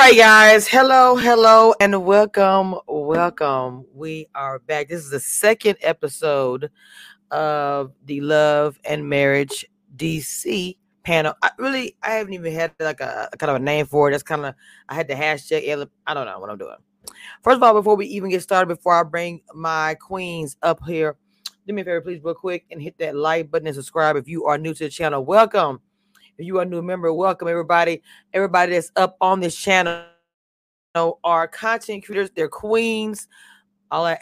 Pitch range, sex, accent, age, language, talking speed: 150-190 Hz, female, American, 30-49, English, 190 wpm